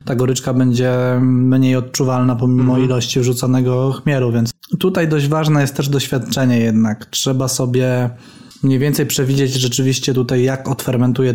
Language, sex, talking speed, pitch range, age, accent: Polish, male, 140 wpm, 125-140 Hz, 20-39, native